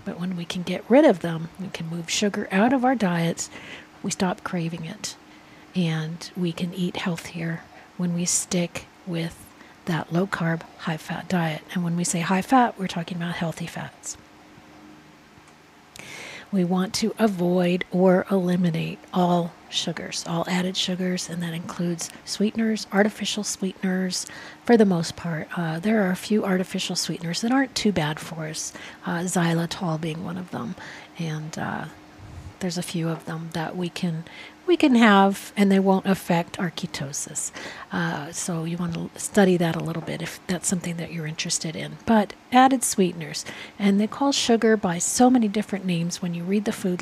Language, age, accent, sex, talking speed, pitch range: English, 50-69, American, female, 170 wpm, 170-205 Hz